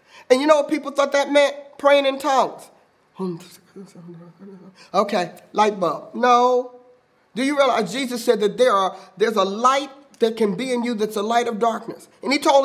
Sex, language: male, English